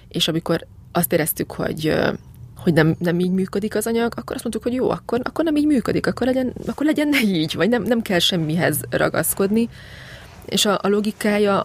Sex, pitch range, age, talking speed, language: female, 165-195 Hz, 20-39, 195 wpm, Hungarian